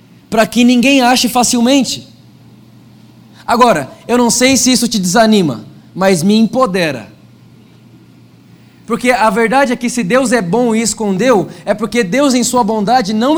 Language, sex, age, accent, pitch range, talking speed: Portuguese, male, 20-39, Brazilian, 175-230 Hz, 150 wpm